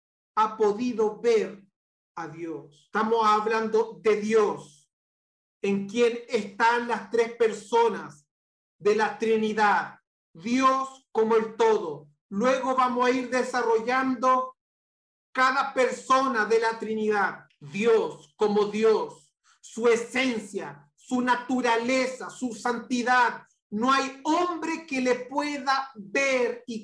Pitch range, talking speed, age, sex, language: 225-280 Hz, 110 wpm, 40-59, male, Spanish